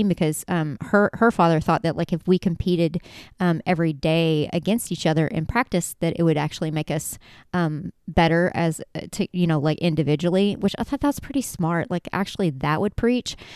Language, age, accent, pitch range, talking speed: English, 30-49, American, 165-200 Hz, 195 wpm